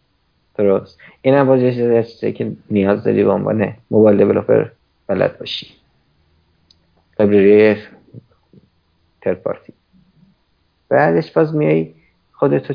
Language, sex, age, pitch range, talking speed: Persian, male, 50-69, 105-130 Hz, 85 wpm